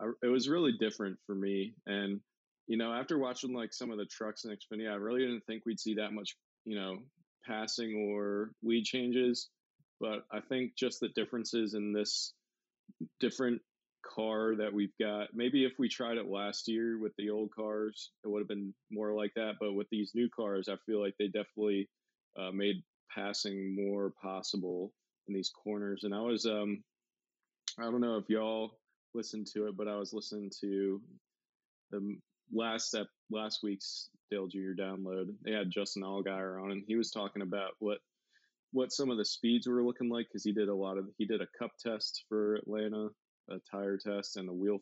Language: English